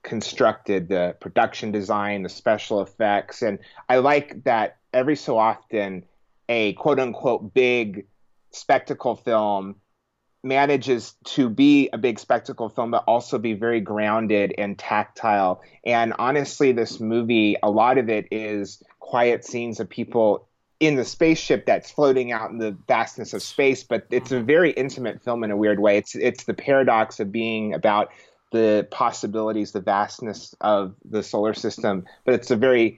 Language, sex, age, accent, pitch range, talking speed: English, male, 30-49, American, 105-120 Hz, 155 wpm